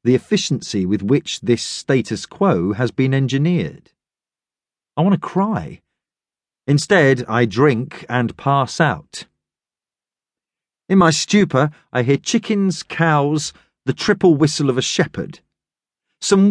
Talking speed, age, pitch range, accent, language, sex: 125 wpm, 40-59, 120-165 Hz, British, English, male